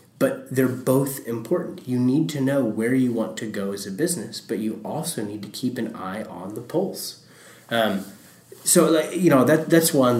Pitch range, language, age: 110-135 Hz, English, 20-39